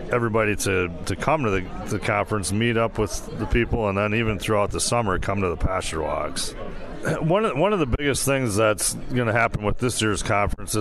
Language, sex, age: English, male, 40-59